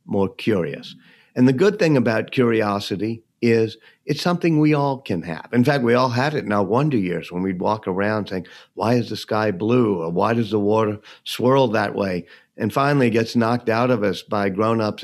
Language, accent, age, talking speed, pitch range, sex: English, American, 50-69, 210 wpm, 110-140 Hz, male